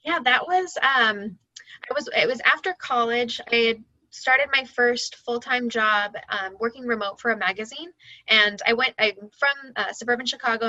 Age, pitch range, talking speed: 10-29, 205-235 Hz, 180 wpm